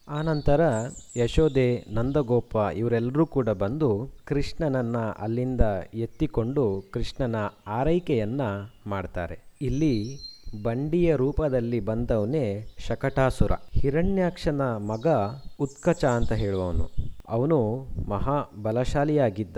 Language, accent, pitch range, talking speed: Kannada, native, 110-140 Hz, 75 wpm